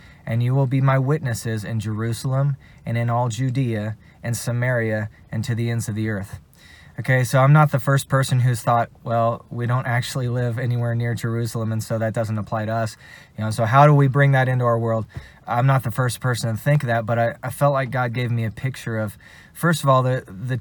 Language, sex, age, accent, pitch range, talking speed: English, male, 20-39, American, 110-130 Hz, 235 wpm